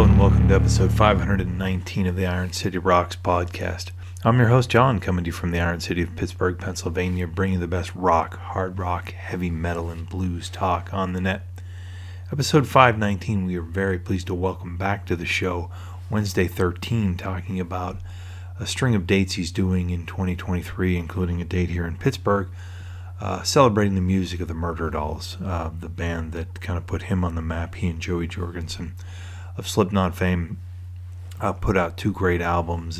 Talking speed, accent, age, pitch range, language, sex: 185 wpm, American, 30-49, 90-95 Hz, English, male